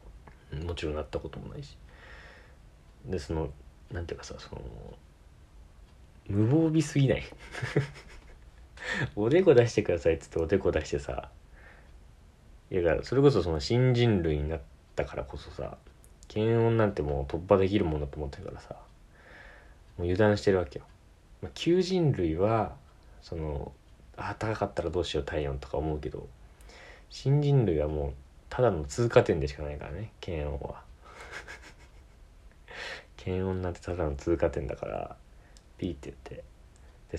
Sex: male